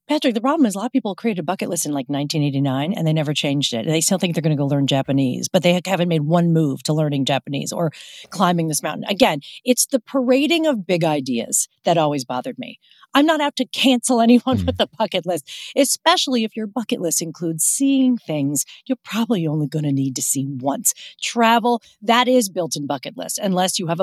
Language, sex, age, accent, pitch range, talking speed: English, female, 40-59, American, 160-245 Hz, 225 wpm